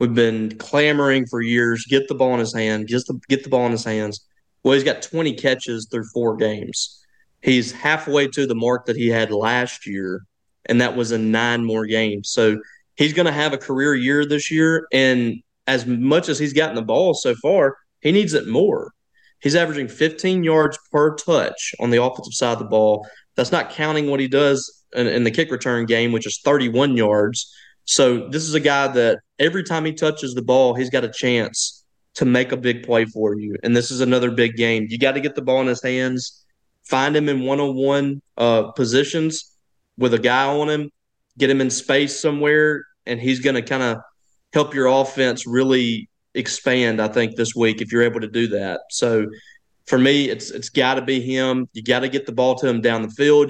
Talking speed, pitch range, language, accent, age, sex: 215 wpm, 115-140 Hz, English, American, 20-39, male